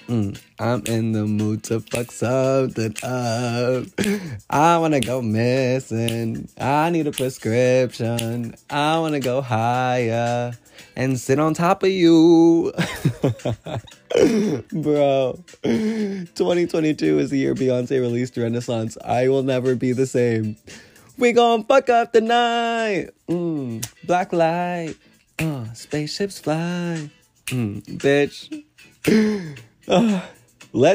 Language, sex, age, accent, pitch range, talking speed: English, male, 20-39, American, 110-150 Hz, 110 wpm